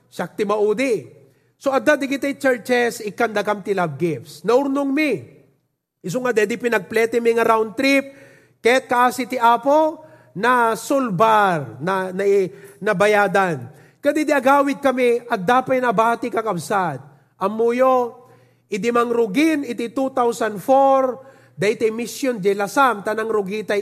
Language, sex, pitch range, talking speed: English, male, 200-255 Hz, 120 wpm